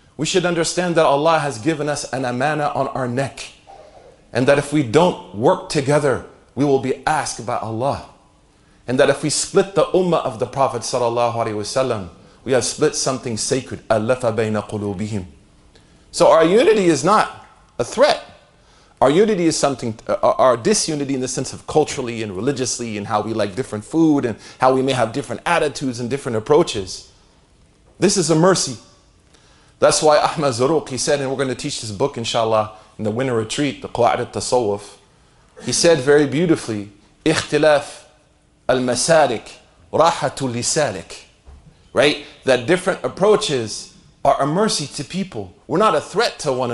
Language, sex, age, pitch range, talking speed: English, male, 40-59, 120-155 Hz, 165 wpm